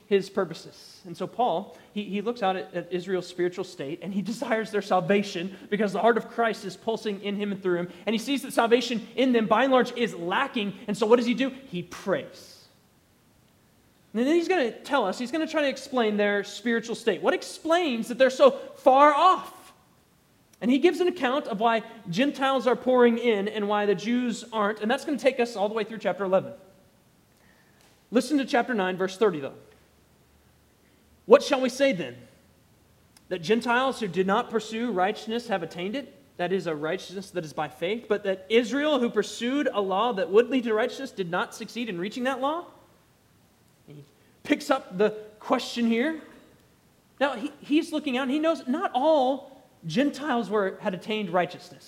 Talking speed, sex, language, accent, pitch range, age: 195 wpm, male, English, American, 190-260 Hz, 30-49